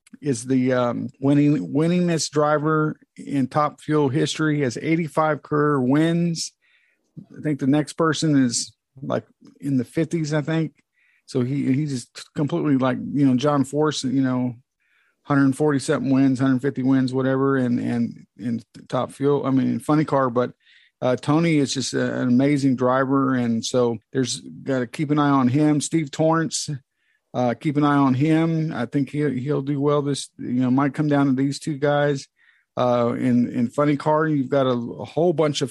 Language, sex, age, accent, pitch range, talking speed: English, male, 50-69, American, 130-150 Hz, 180 wpm